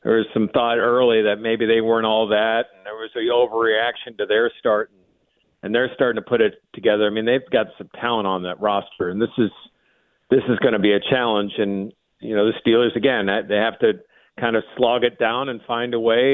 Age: 50-69